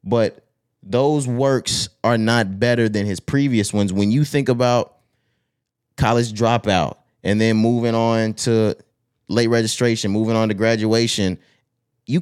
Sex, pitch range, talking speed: male, 105-125 Hz, 140 wpm